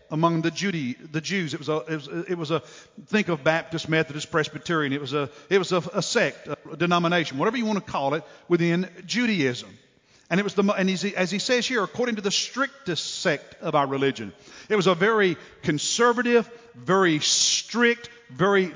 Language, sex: English, male